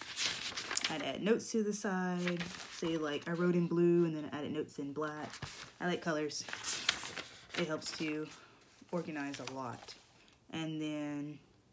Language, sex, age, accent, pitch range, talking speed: English, female, 20-39, American, 150-175 Hz, 155 wpm